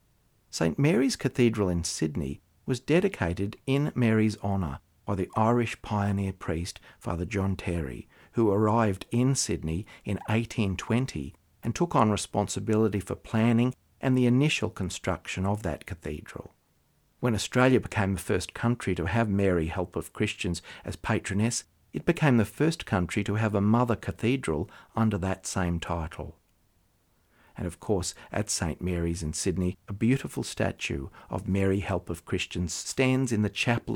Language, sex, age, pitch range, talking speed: English, male, 50-69, 90-120 Hz, 150 wpm